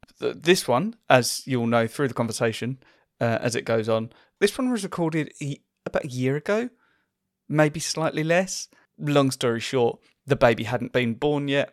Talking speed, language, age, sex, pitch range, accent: 175 wpm, English, 30-49, male, 115-150 Hz, British